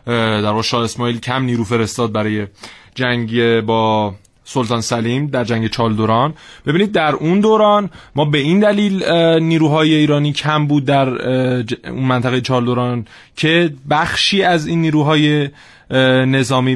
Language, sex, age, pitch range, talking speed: Persian, male, 20-39, 120-150 Hz, 130 wpm